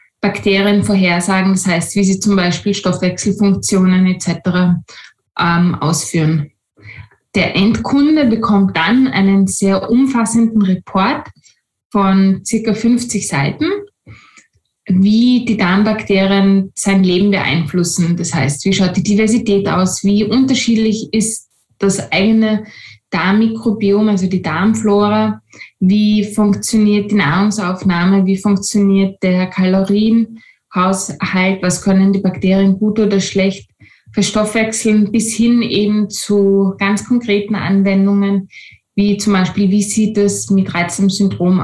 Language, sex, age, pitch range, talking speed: German, female, 20-39, 185-210 Hz, 110 wpm